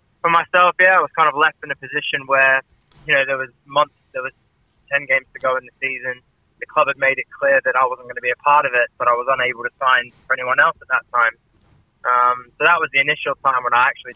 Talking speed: 270 wpm